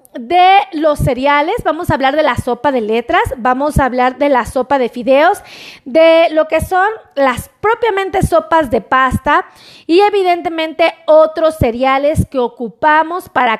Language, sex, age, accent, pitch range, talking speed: Spanish, female, 30-49, Mexican, 280-380 Hz, 155 wpm